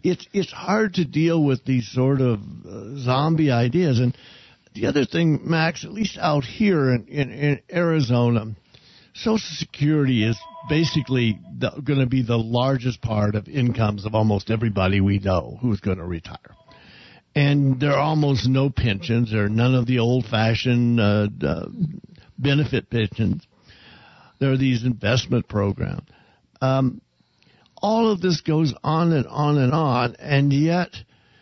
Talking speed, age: 150 wpm, 60-79